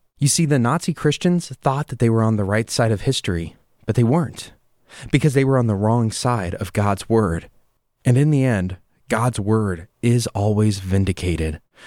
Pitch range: 105-150 Hz